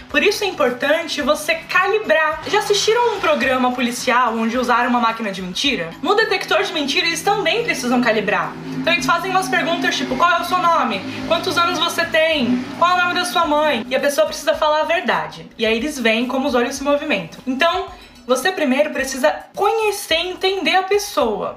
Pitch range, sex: 245-335 Hz, female